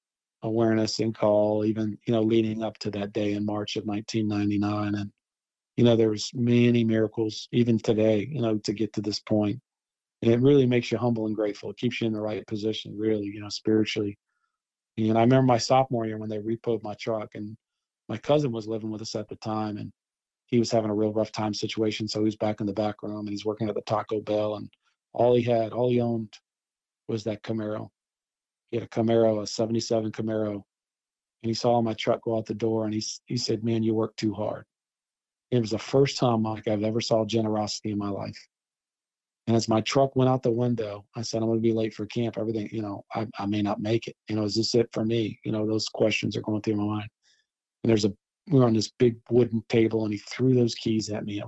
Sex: male